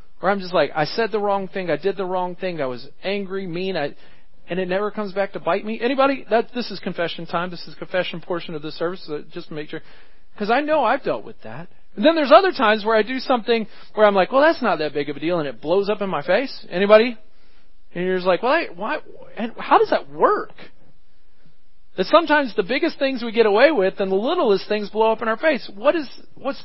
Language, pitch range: English, 180-230 Hz